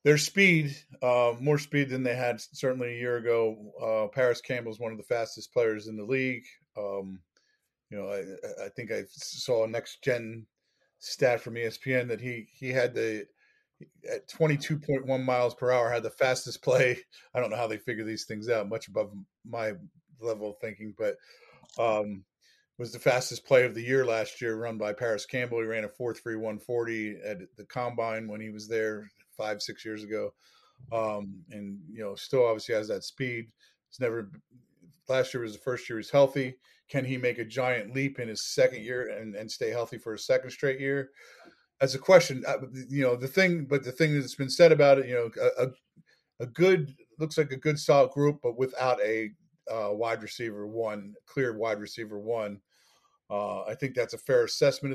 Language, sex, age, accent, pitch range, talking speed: English, male, 40-59, American, 110-145 Hz, 200 wpm